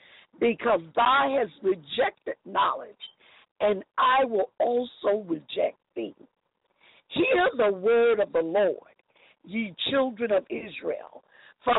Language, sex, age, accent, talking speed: English, female, 50-69, American, 110 wpm